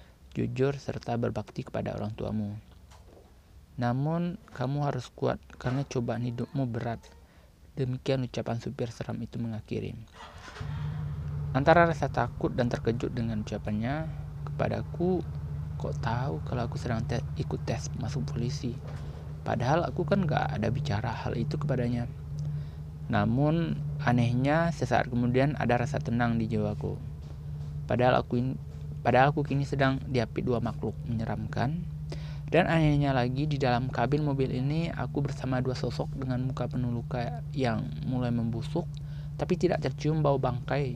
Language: Indonesian